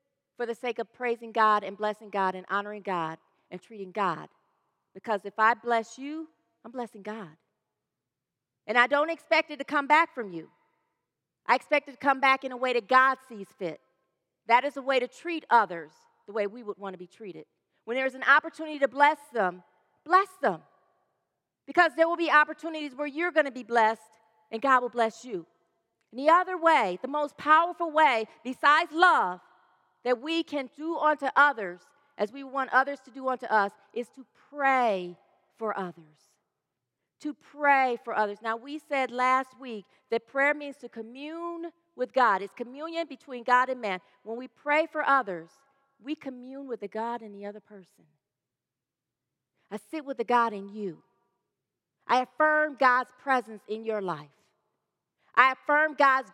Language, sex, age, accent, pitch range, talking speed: English, female, 40-59, American, 210-280 Hz, 180 wpm